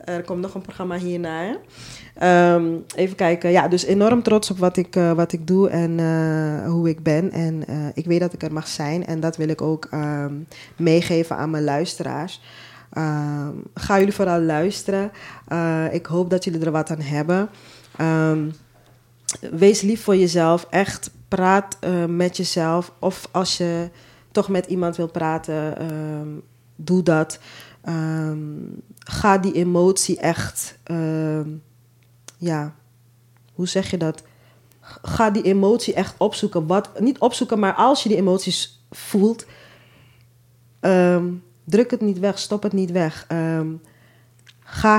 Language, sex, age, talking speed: Dutch, female, 20-39, 150 wpm